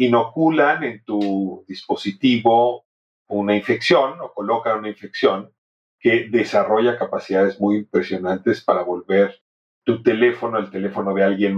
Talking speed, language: 120 wpm, Spanish